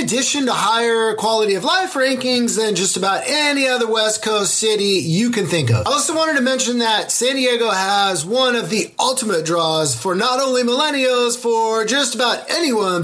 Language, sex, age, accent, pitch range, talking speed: English, male, 30-49, American, 190-255 Hz, 190 wpm